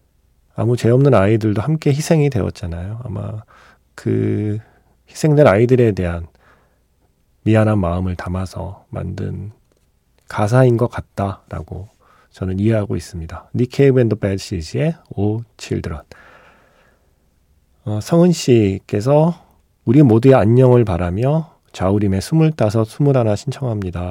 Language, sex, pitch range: Korean, male, 95-125 Hz